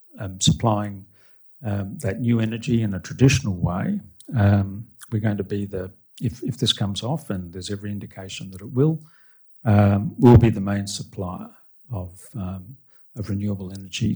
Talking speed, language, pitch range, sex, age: 160 wpm, English, 100-120 Hz, male, 50-69